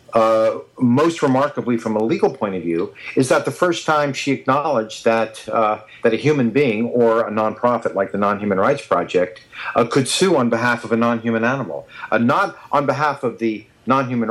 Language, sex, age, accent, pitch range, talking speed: English, male, 50-69, American, 110-125 Hz, 195 wpm